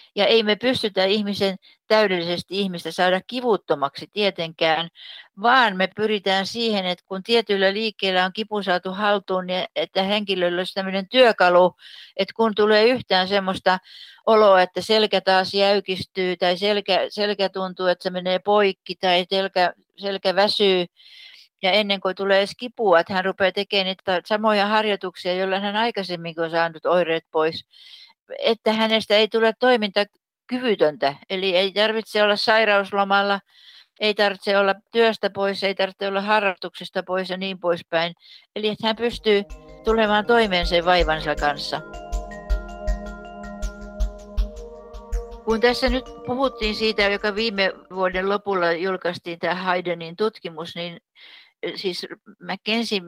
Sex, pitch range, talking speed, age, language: female, 180-210 Hz, 135 wpm, 60-79, Finnish